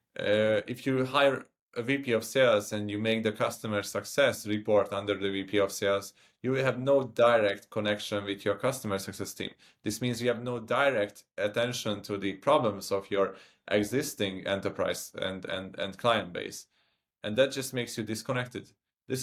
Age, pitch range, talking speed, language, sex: 20-39, 100-125 Hz, 180 wpm, English, male